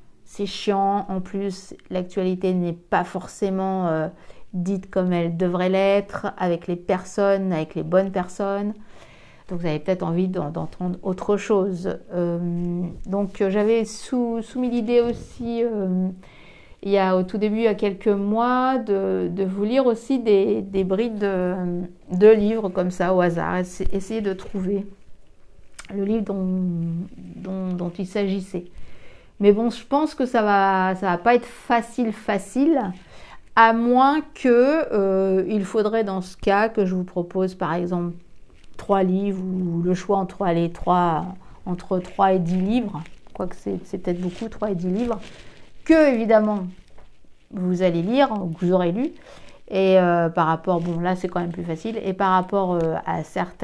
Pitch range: 180-210 Hz